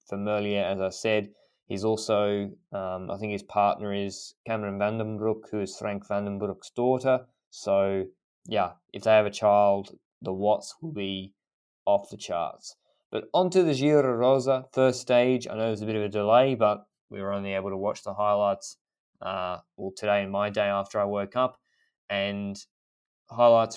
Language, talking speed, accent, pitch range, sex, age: English, 175 wpm, Australian, 100-130 Hz, male, 20-39